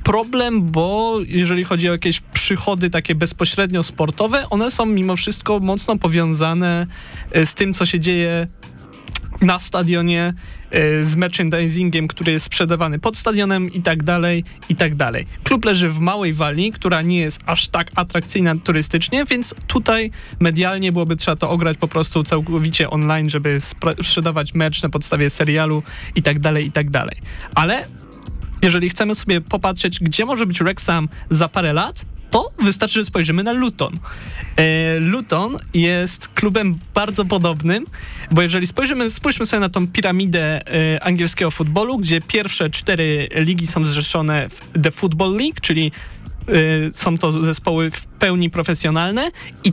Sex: male